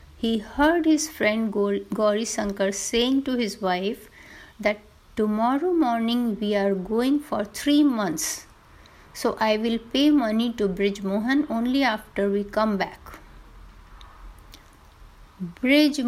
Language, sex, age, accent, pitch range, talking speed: Hindi, female, 50-69, native, 200-275 Hz, 120 wpm